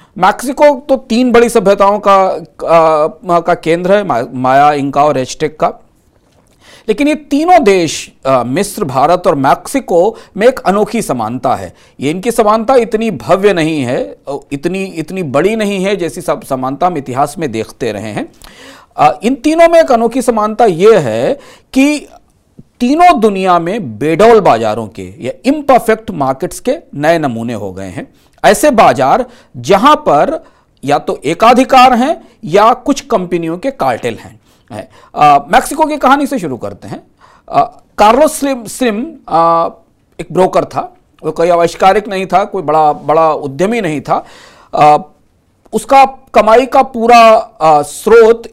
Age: 40-59